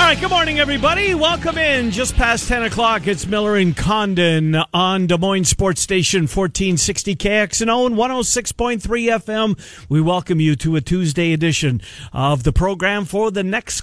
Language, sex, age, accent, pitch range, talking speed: English, male, 50-69, American, 140-195 Hz, 170 wpm